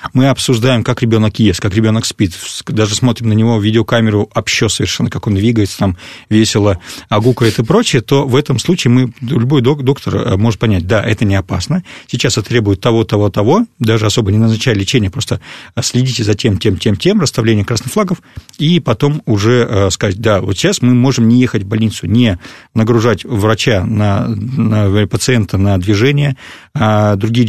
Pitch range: 105-125 Hz